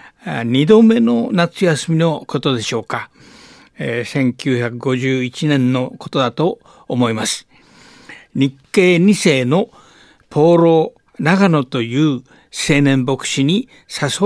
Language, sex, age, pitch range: Japanese, male, 60-79, 135-170 Hz